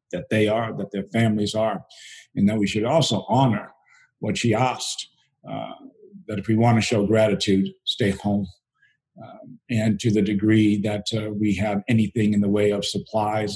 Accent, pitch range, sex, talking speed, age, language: American, 105-115 Hz, male, 175 wpm, 50-69, English